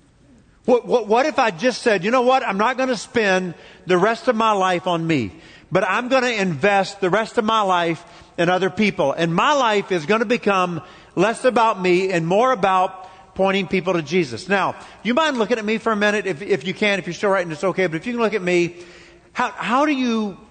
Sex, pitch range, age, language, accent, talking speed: male, 170-225 Hz, 50-69, English, American, 245 wpm